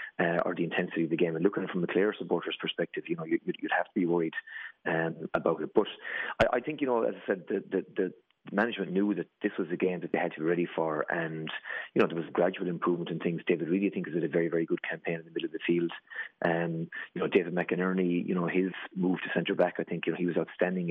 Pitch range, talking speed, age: 85-100 Hz, 285 wpm, 30-49